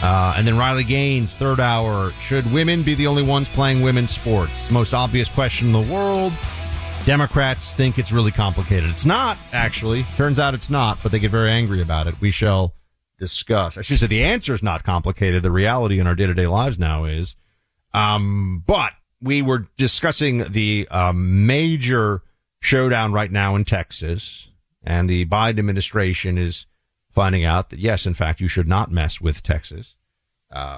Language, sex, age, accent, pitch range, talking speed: English, male, 40-59, American, 90-120 Hz, 175 wpm